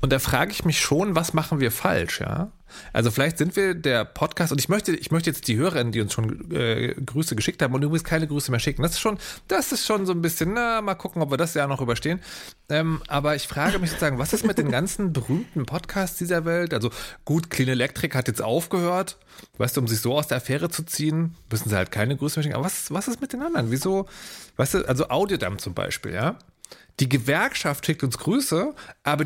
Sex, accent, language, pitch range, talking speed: male, German, German, 135-190 Hz, 240 wpm